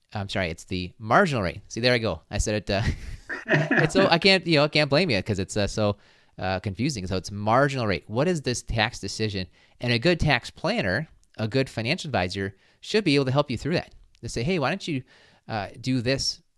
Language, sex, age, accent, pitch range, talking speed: English, male, 30-49, American, 100-135 Hz, 230 wpm